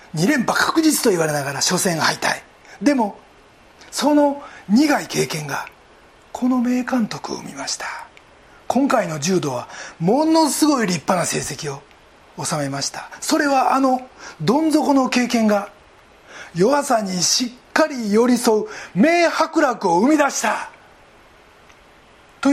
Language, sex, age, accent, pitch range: Japanese, male, 40-59, native, 185-285 Hz